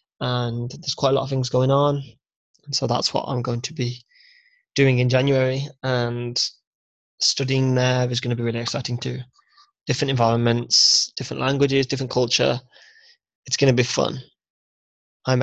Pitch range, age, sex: 125-150 Hz, 20-39, male